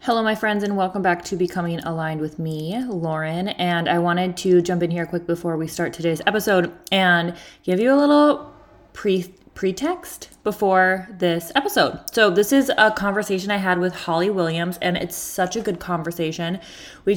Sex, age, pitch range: female, 20-39, 165-190 Hz